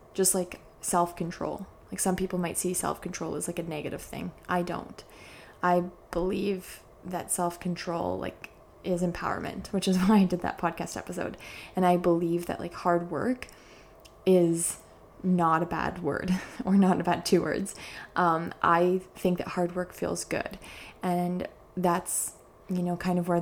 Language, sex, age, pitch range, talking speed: English, female, 20-39, 175-190 Hz, 160 wpm